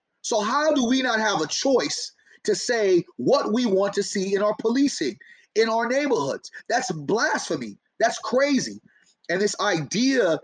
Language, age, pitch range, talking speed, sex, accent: English, 30-49, 160-255 Hz, 160 wpm, male, American